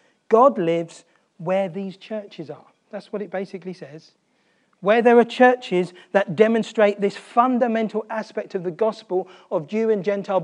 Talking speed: 155 wpm